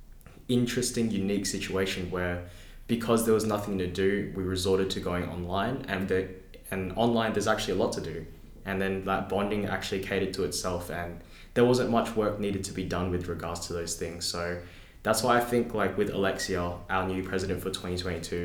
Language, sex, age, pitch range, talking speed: English, male, 10-29, 90-105 Hz, 195 wpm